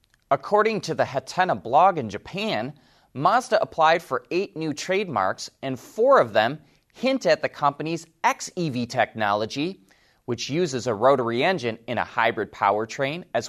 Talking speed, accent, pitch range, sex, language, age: 145 wpm, American, 110-160 Hz, male, English, 30-49